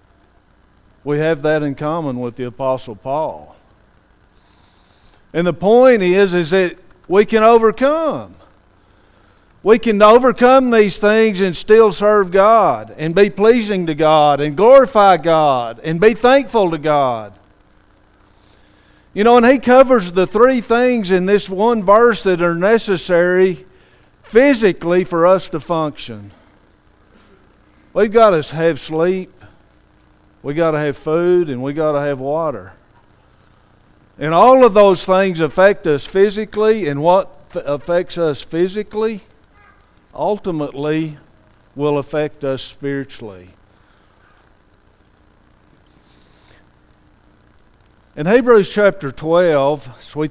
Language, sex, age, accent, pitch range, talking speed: English, male, 50-69, American, 135-200 Hz, 120 wpm